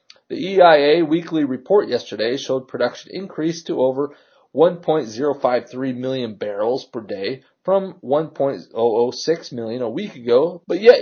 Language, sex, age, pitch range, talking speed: English, male, 30-49, 125-190 Hz, 125 wpm